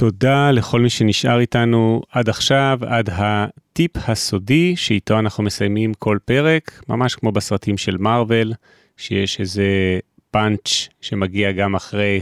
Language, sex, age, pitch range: Hebrew, male, 30-49, 105-135 Hz